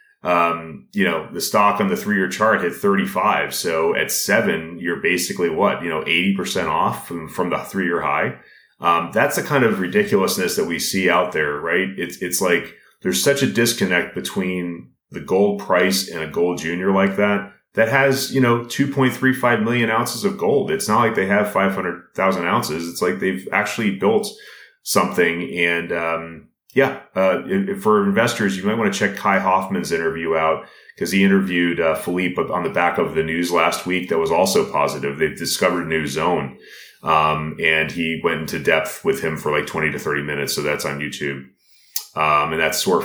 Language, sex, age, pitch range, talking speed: English, male, 30-49, 85-130 Hz, 190 wpm